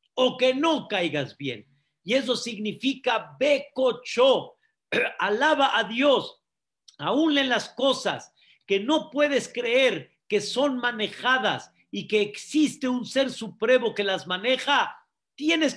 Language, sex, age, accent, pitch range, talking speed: Spanish, male, 50-69, Mexican, 190-260 Hz, 125 wpm